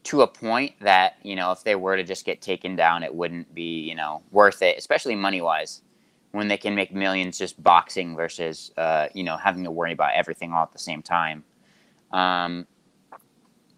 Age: 20-39